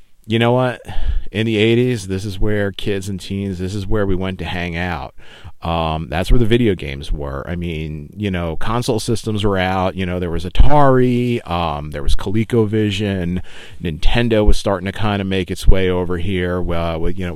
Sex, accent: male, American